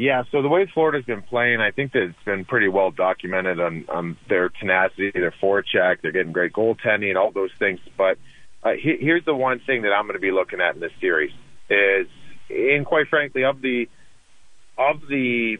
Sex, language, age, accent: male, English, 40-59, American